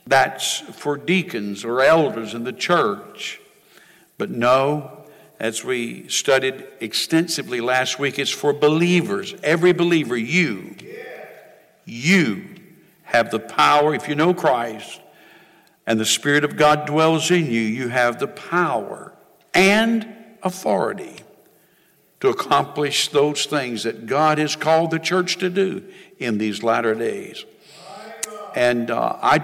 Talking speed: 130 wpm